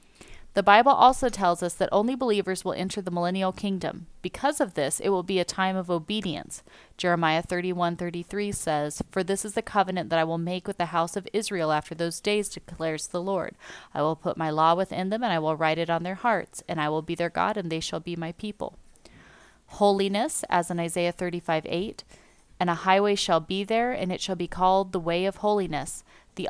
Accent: American